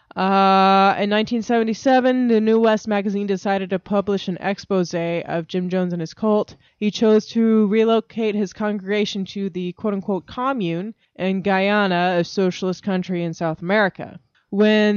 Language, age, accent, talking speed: English, 20-39, American, 150 wpm